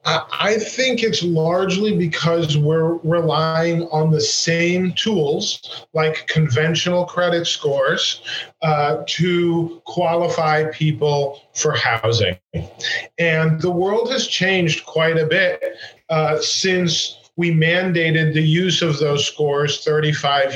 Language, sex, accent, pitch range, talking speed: English, male, American, 150-175 Hz, 115 wpm